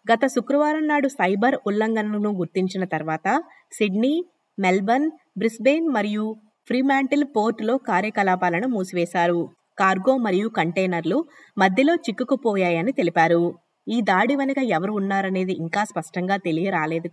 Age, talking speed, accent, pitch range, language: 20-39, 100 wpm, native, 180-250 Hz, Telugu